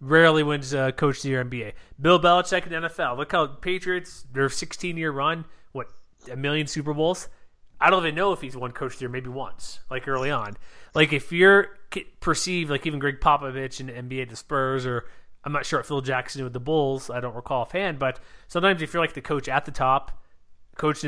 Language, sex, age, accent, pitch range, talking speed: English, male, 30-49, American, 130-155 Hz, 215 wpm